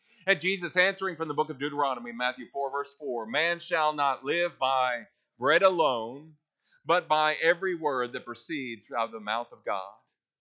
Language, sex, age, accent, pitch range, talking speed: English, male, 40-59, American, 140-195 Hz, 180 wpm